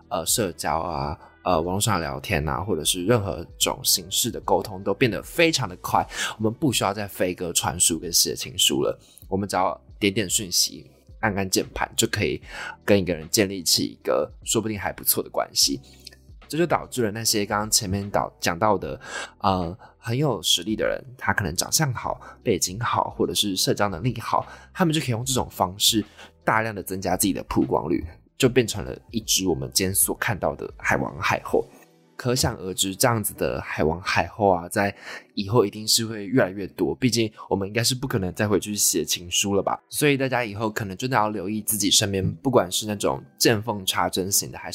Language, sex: Chinese, male